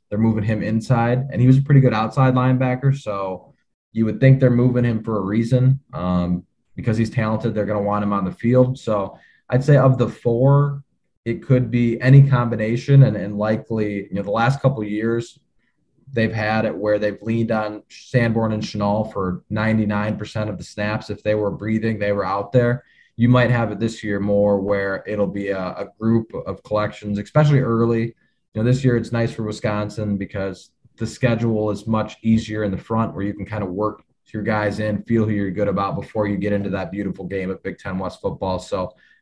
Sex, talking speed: male, 215 wpm